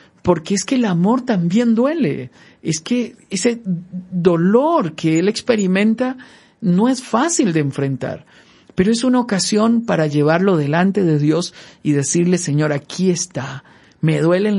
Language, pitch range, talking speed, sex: Spanish, 150-215 Hz, 145 wpm, male